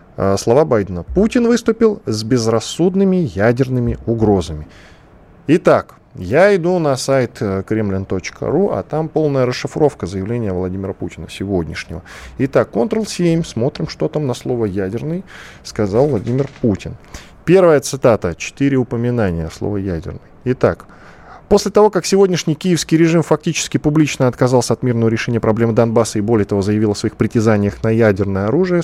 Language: Russian